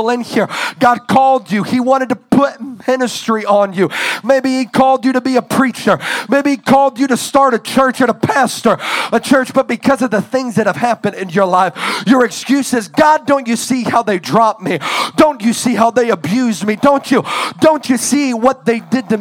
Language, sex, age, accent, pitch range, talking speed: English, male, 40-59, American, 225-270 Hz, 215 wpm